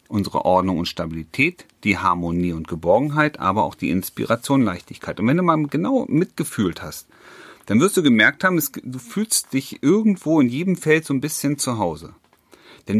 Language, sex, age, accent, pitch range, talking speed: German, male, 40-59, German, 105-150 Hz, 180 wpm